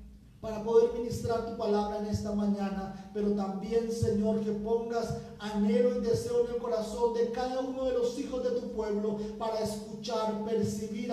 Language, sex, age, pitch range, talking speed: Spanish, male, 40-59, 160-210 Hz, 165 wpm